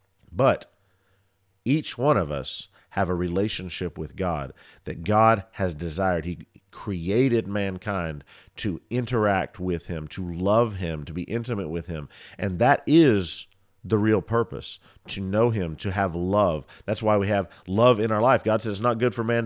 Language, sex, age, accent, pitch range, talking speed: English, male, 50-69, American, 90-115 Hz, 175 wpm